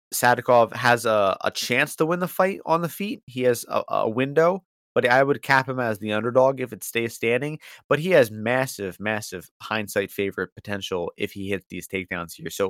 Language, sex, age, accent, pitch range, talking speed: English, male, 30-49, American, 100-135 Hz, 210 wpm